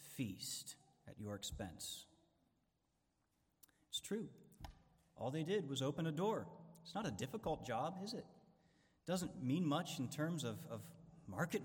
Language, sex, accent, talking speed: English, male, American, 145 wpm